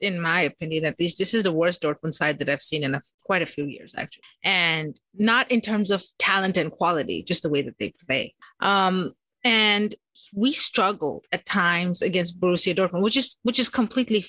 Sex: female